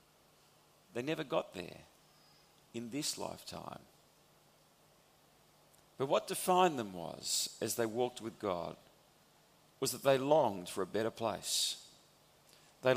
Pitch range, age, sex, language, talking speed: 115-165 Hz, 40-59, male, English, 120 wpm